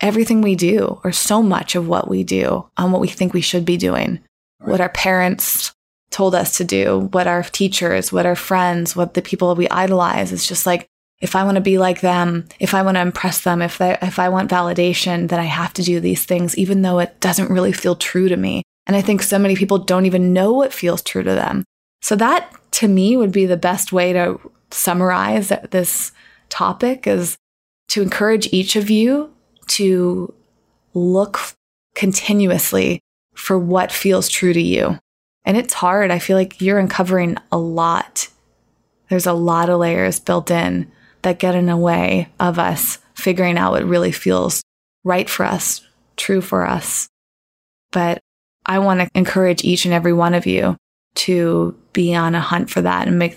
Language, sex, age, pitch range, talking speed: English, female, 20-39, 170-190 Hz, 190 wpm